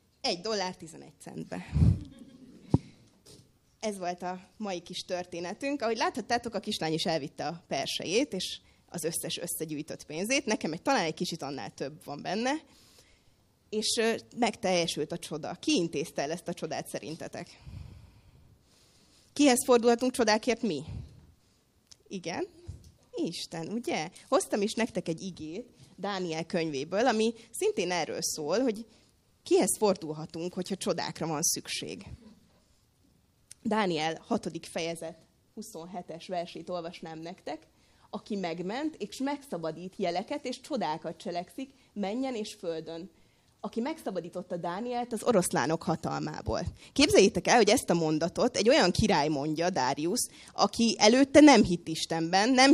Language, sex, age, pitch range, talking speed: Hungarian, female, 30-49, 170-235 Hz, 125 wpm